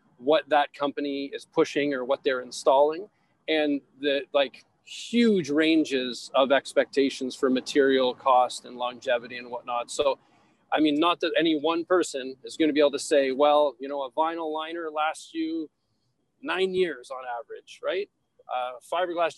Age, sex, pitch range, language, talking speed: 40-59, male, 145-175 Hz, English, 160 wpm